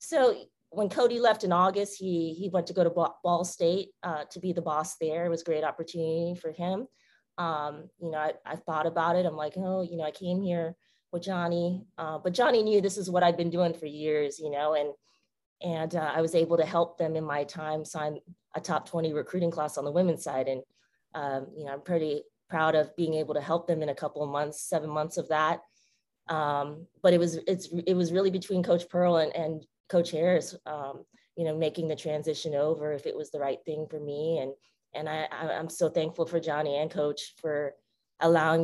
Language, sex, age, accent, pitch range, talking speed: English, female, 20-39, American, 150-175 Hz, 225 wpm